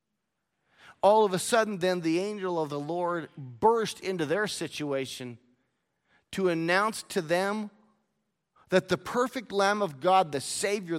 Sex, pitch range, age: male, 155-200 Hz, 40-59